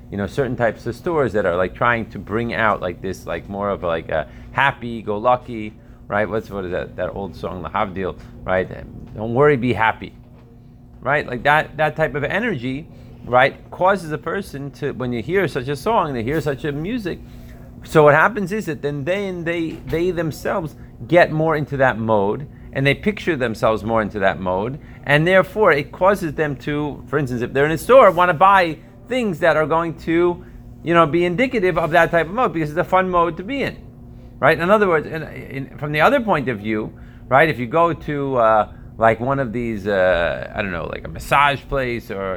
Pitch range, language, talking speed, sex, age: 110-155 Hz, English, 210 wpm, male, 30-49